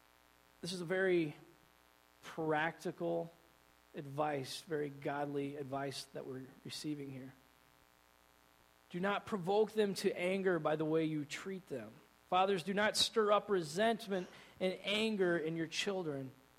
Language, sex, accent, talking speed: English, male, American, 130 wpm